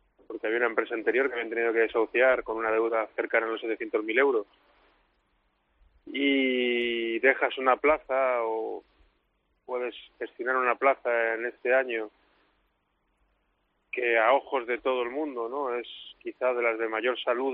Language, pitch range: Spanish, 110-135 Hz